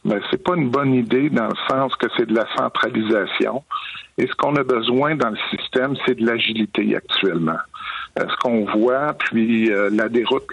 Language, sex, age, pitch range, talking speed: French, male, 50-69, 115-150 Hz, 195 wpm